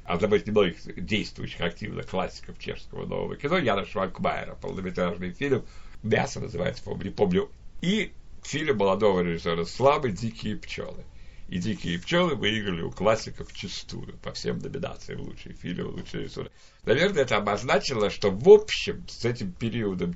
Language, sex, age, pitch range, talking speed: Russian, male, 60-79, 100-130 Hz, 140 wpm